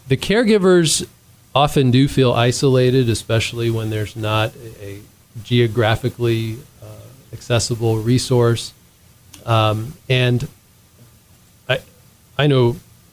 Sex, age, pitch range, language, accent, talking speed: male, 40-59, 110-125 Hz, English, American, 95 wpm